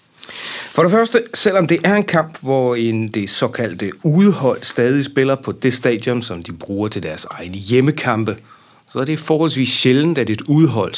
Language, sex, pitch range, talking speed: Danish, male, 105-140 Hz, 175 wpm